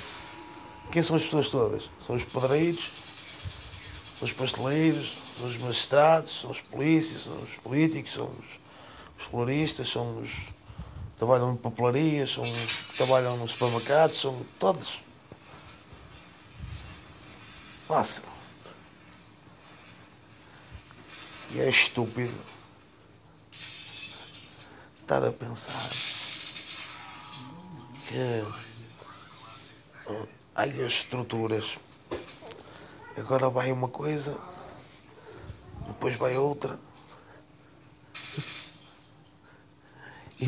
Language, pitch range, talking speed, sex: German, 110-145 Hz, 85 wpm, male